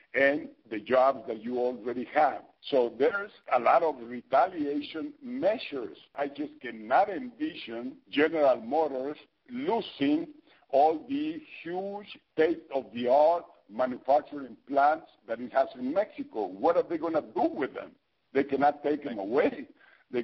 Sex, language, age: male, English, 50-69